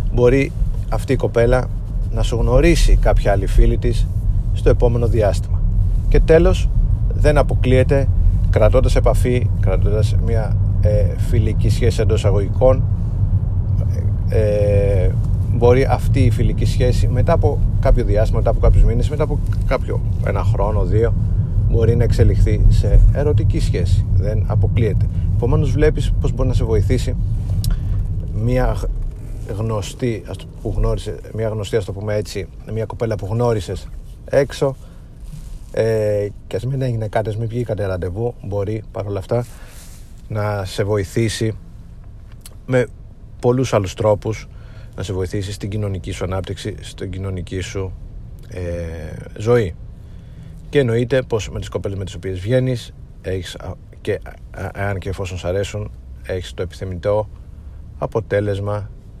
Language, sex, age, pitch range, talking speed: Greek, male, 30-49, 95-110 Hz, 135 wpm